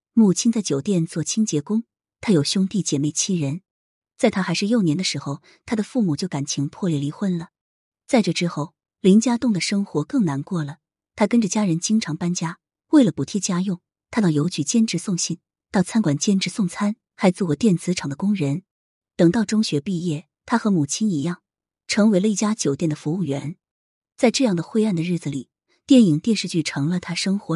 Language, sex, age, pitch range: Chinese, female, 20-39, 155-210 Hz